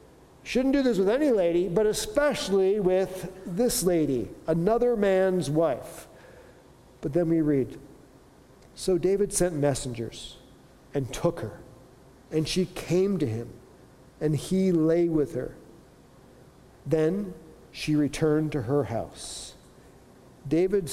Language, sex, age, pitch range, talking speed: English, male, 50-69, 150-190 Hz, 120 wpm